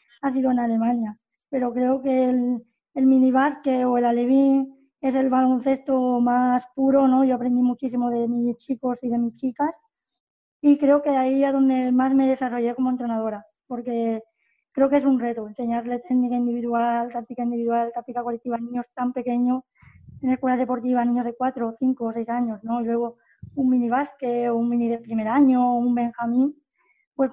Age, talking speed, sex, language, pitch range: 20-39, 175 wpm, female, Spanish, 240-265 Hz